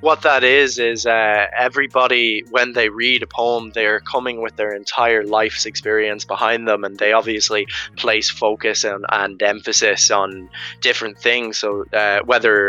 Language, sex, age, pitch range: English, male, 20-39, 100-115 Hz